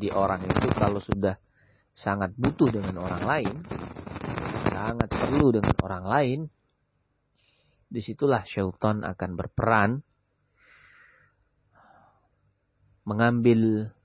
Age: 30-49